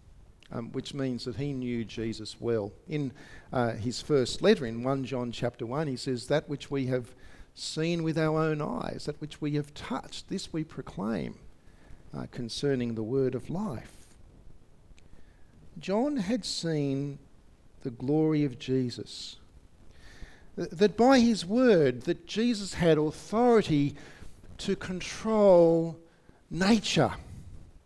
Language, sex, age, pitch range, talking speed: English, male, 50-69, 110-175 Hz, 130 wpm